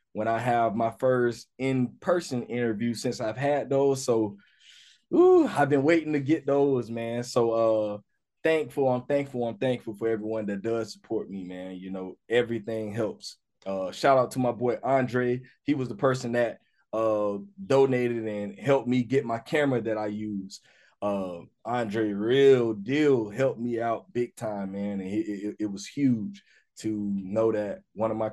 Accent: American